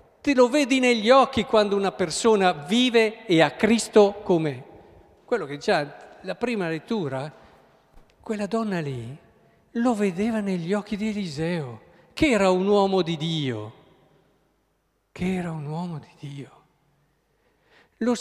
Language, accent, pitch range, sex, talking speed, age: Italian, native, 150-215 Hz, male, 135 wpm, 50-69